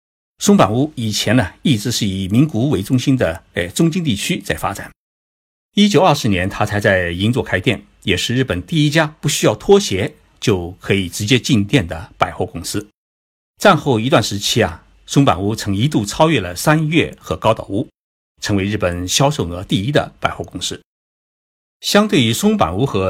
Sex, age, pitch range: male, 50-69, 95-140 Hz